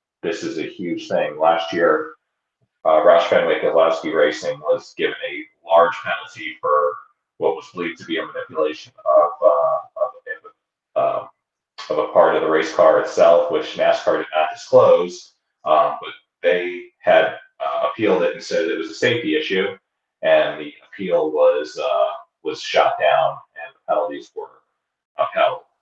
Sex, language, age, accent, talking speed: male, English, 30-49, American, 160 wpm